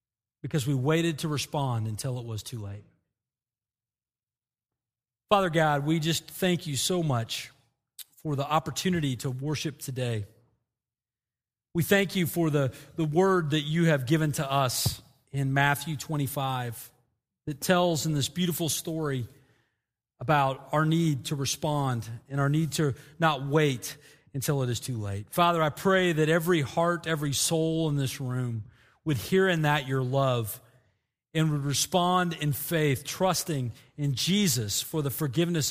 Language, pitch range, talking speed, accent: English, 120-155 Hz, 150 wpm, American